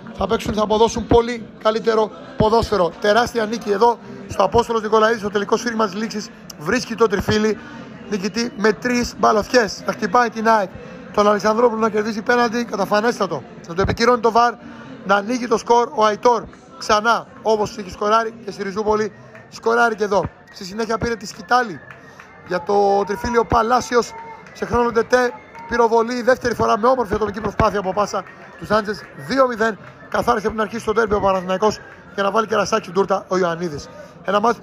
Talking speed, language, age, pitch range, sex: 170 wpm, Greek, 30-49, 205-235 Hz, male